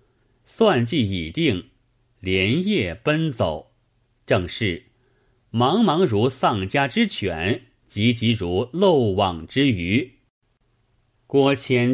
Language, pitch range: Chinese, 95-130 Hz